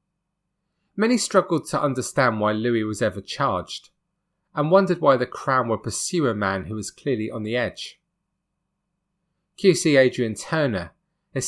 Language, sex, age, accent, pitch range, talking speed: English, male, 30-49, British, 120-180 Hz, 145 wpm